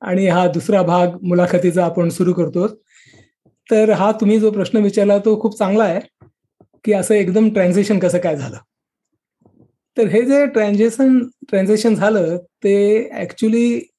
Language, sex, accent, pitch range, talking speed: Marathi, male, native, 195-240 Hz, 145 wpm